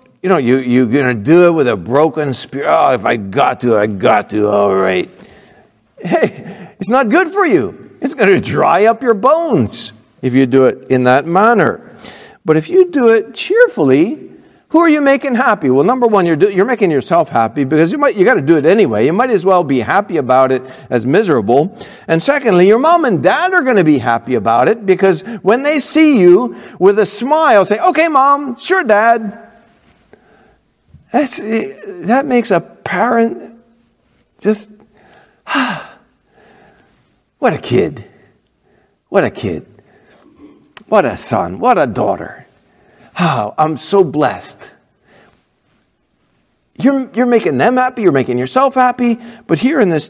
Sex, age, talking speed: male, 50-69, 170 wpm